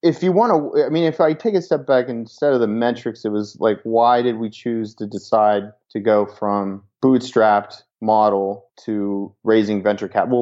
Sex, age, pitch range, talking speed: male, 30-49, 105-120 Hz, 195 wpm